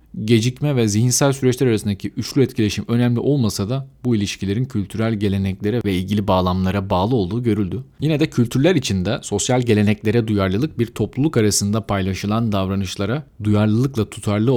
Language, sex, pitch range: Turkish, male, 100-120 Hz